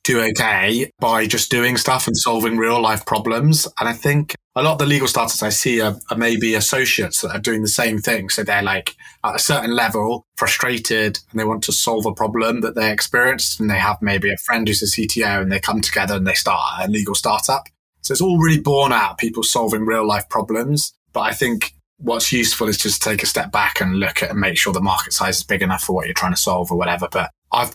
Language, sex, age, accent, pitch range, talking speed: English, male, 20-39, British, 100-115 Hz, 245 wpm